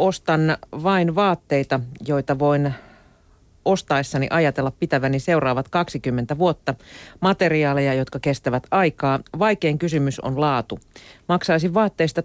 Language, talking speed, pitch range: Finnish, 105 wpm, 130-165 Hz